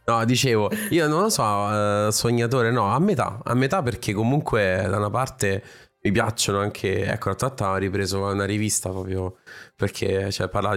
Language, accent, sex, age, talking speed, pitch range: Italian, native, male, 20-39, 175 wpm, 95-115 Hz